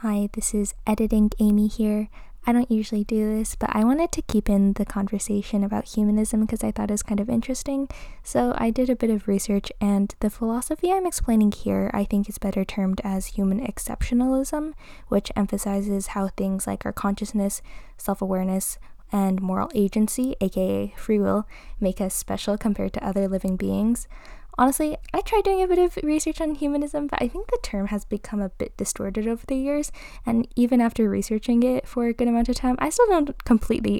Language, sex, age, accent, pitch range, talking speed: English, female, 10-29, American, 195-240 Hz, 195 wpm